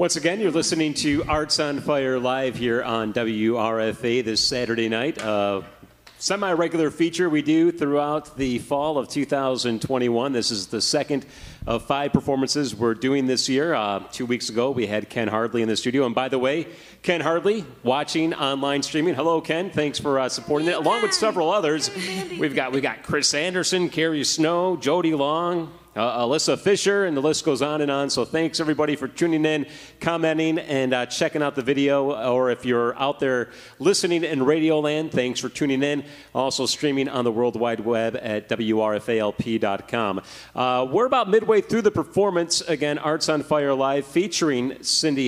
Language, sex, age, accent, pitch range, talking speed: English, male, 40-59, American, 125-155 Hz, 180 wpm